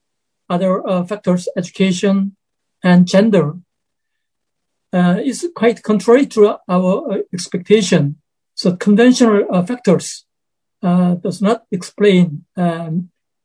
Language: English